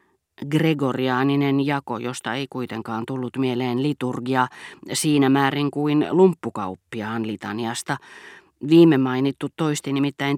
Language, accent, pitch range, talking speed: Finnish, native, 125-160 Hz, 100 wpm